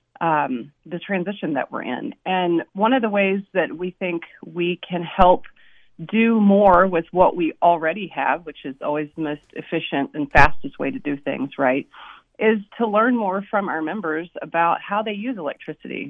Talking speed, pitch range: 185 wpm, 160-205 Hz